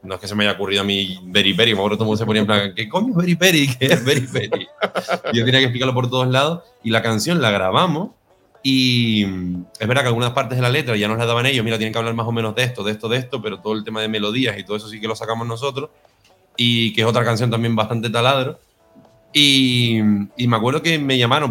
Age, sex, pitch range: 30-49, male, 110-140 Hz